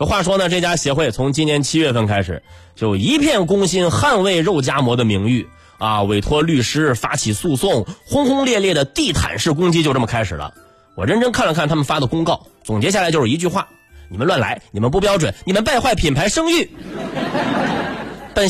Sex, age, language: male, 30-49, Chinese